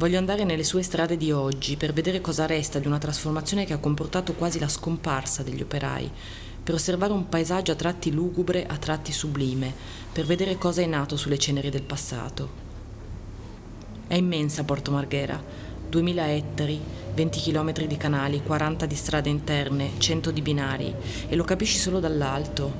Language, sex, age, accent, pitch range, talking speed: Italian, female, 20-39, native, 125-165 Hz, 165 wpm